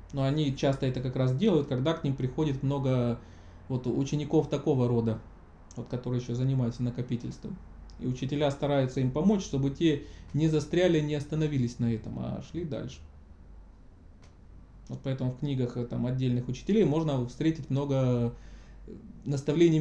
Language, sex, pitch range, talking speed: Russian, male, 120-150 Hz, 135 wpm